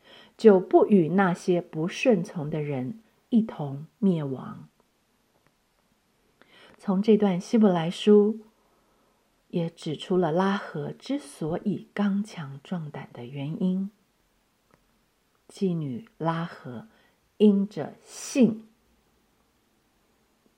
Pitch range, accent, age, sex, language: 175-225 Hz, native, 50-69, female, Chinese